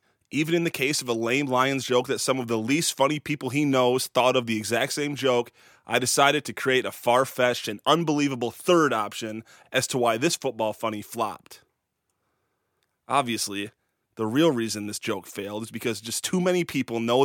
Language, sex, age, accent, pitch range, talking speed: English, male, 20-39, American, 115-150 Hz, 190 wpm